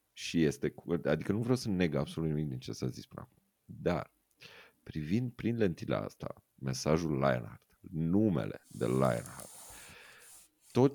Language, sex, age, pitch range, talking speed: Romanian, male, 30-49, 70-95 Hz, 140 wpm